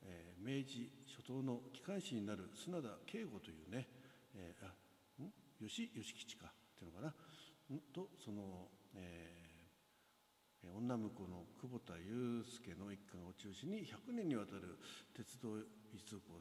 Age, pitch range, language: 60-79, 95-135 Hz, Japanese